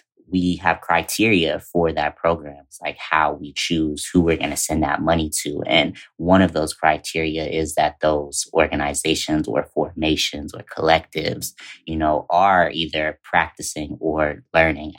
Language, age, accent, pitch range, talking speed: English, 20-39, American, 75-85 Hz, 150 wpm